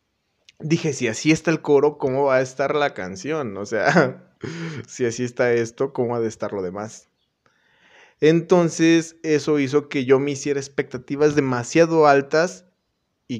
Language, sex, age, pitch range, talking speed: Spanish, male, 20-39, 115-155 Hz, 155 wpm